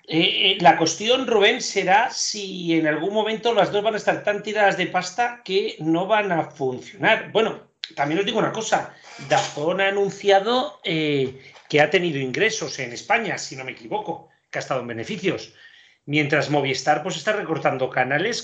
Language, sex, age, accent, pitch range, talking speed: Spanish, male, 40-59, Spanish, 150-200 Hz, 180 wpm